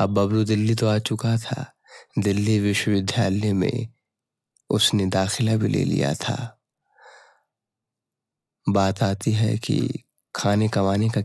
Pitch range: 100-120 Hz